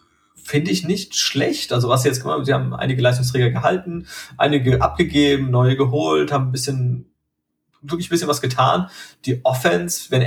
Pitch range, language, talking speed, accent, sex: 120-140 Hz, German, 170 wpm, German, male